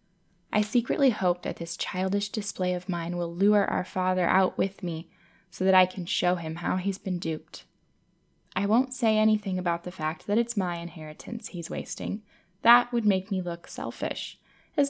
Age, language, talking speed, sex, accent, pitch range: 10-29, English, 185 wpm, female, American, 175-205 Hz